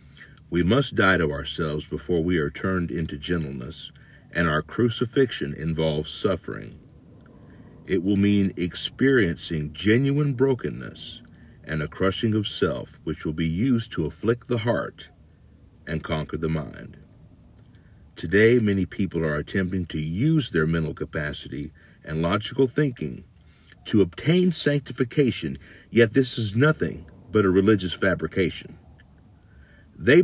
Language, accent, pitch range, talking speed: English, American, 80-115 Hz, 125 wpm